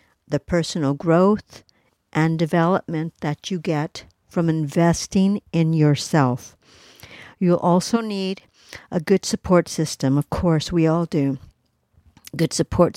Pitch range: 150-180 Hz